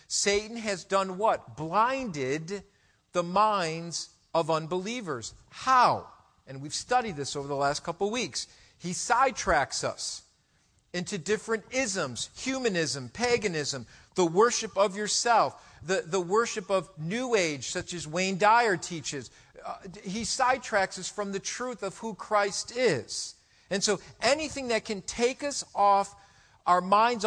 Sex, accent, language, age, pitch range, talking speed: male, American, English, 50-69, 155-215 Hz, 140 wpm